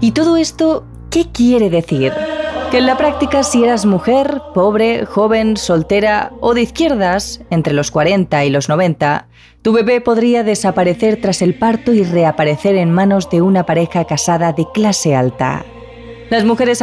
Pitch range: 165-245 Hz